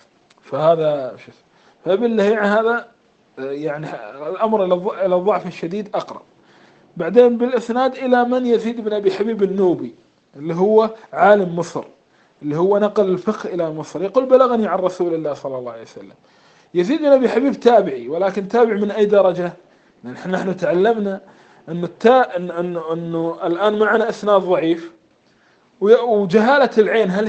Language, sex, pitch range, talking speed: Arabic, male, 175-245 Hz, 135 wpm